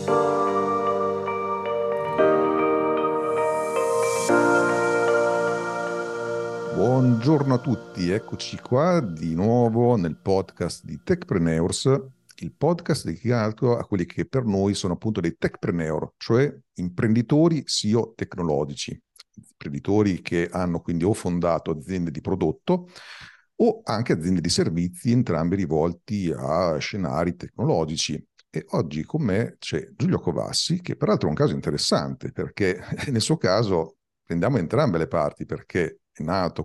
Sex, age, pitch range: male, 50-69, 80-125 Hz